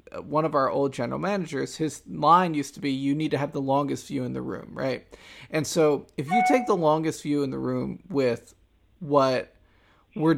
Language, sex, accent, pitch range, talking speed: English, male, American, 135-160 Hz, 210 wpm